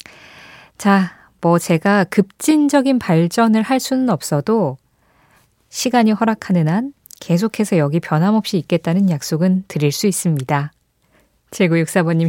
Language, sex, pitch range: Korean, female, 160-225 Hz